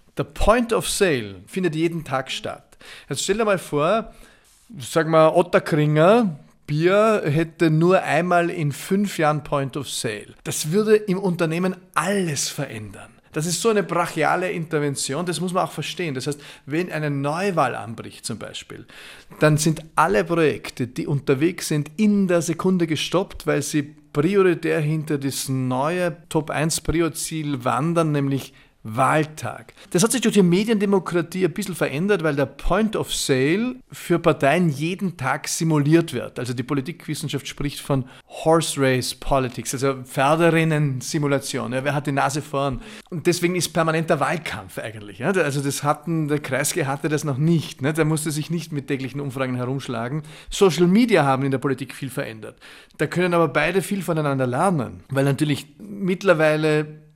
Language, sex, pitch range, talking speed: German, male, 140-175 Hz, 160 wpm